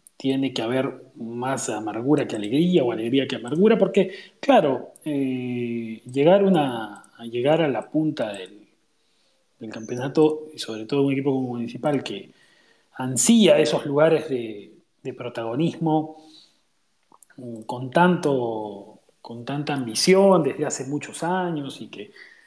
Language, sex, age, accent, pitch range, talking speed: Spanish, male, 30-49, Argentinian, 130-170 Hz, 125 wpm